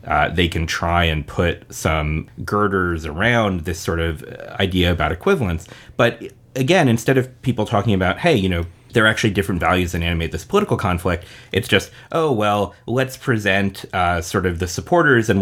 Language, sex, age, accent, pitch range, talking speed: English, male, 30-49, American, 85-110 Hz, 185 wpm